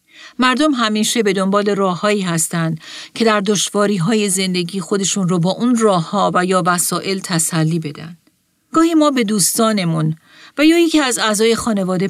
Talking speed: 160 wpm